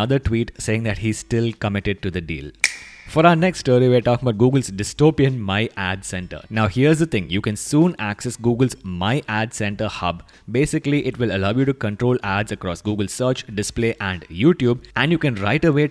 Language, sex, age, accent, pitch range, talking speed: English, male, 20-39, Indian, 105-135 Hz, 205 wpm